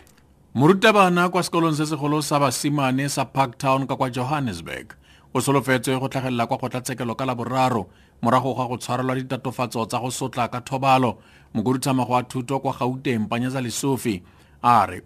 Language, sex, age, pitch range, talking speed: English, male, 40-59, 120-135 Hz, 145 wpm